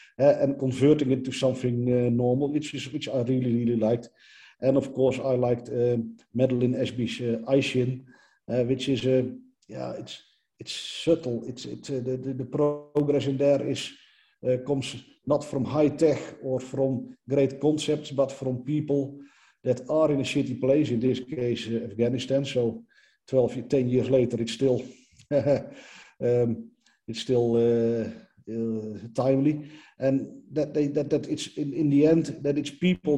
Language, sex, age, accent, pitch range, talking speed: English, male, 50-69, Dutch, 125-140 Hz, 170 wpm